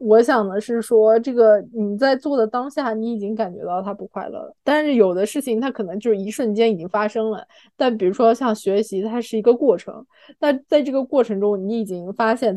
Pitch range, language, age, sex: 190-240 Hz, Chinese, 20-39, female